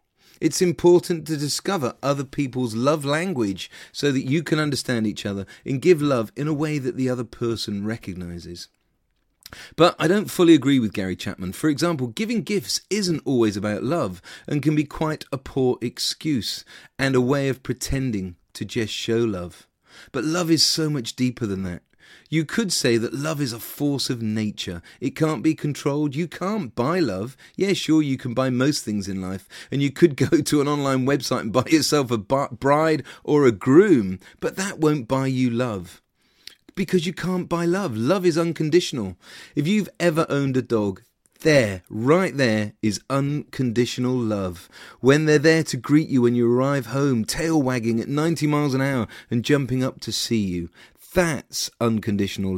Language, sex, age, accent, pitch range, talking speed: English, male, 30-49, British, 115-155 Hz, 185 wpm